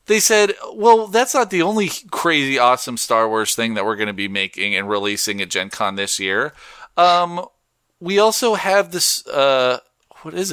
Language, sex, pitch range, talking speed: English, male, 125-190 Hz, 190 wpm